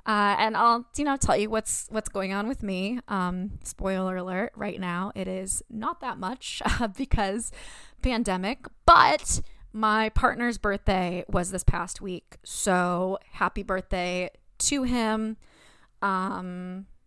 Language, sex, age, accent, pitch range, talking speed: English, female, 20-39, American, 180-215 Hz, 140 wpm